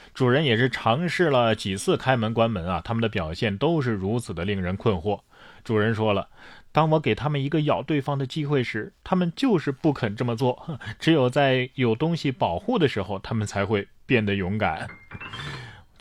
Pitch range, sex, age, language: 105-150 Hz, male, 20-39, Chinese